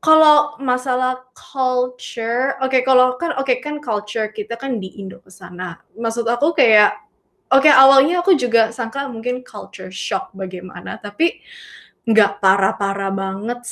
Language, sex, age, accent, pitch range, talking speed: Indonesian, female, 20-39, native, 195-250 Hz, 145 wpm